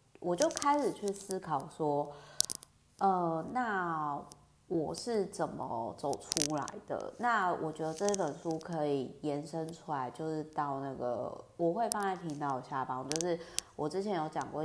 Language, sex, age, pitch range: Chinese, female, 30-49, 140-165 Hz